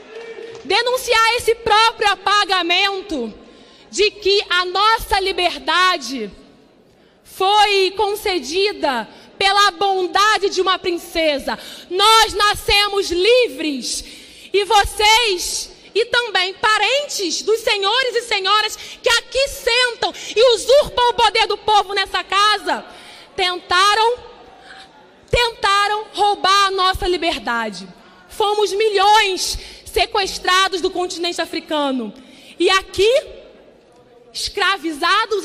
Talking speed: 95 wpm